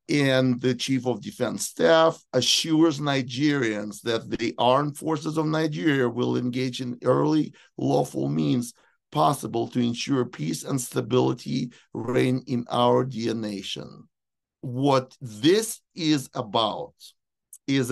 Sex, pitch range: male, 120-150 Hz